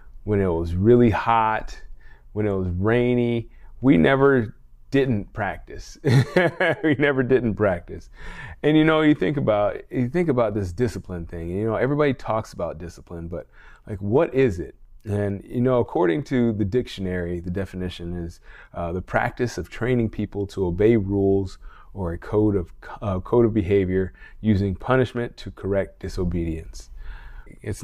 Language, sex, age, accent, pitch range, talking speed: English, male, 30-49, American, 90-120 Hz, 160 wpm